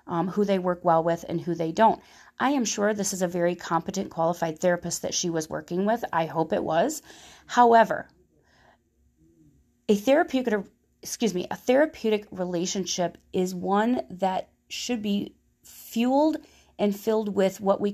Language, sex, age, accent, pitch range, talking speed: English, female, 30-49, American, 180-230 Hz, 160 wpm